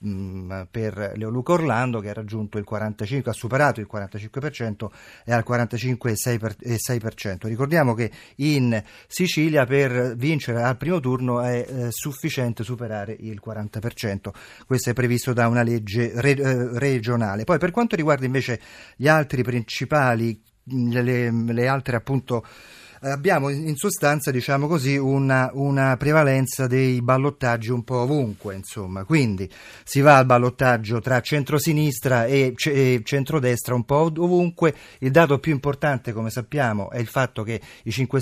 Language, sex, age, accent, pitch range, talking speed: Italian, male, 40-59, native, 115-140 Hz, 135 wpm